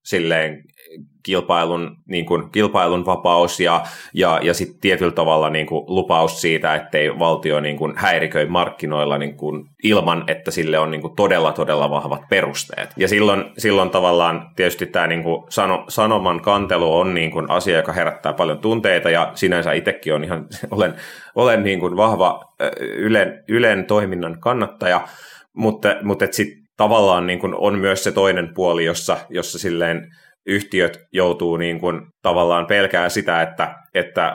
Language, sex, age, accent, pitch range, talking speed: Finnish, male, 30-49, native, 80-95 Hz, 150 wpm